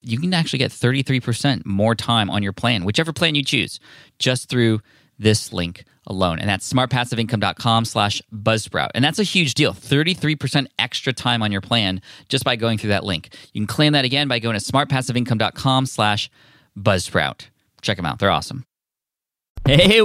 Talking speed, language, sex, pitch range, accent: 175 wpm, English, male, 105-135 Hz, American